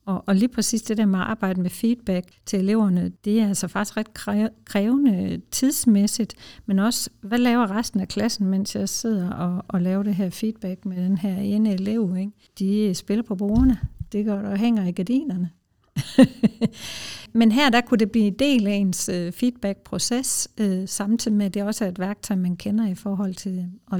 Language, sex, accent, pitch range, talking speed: English, female, Danish, 185-220 Hz, 190 wpm